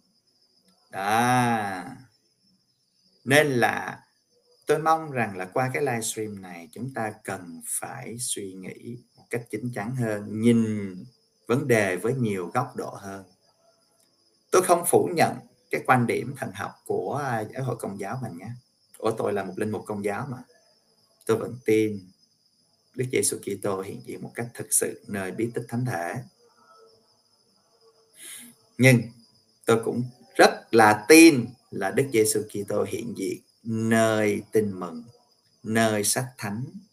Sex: male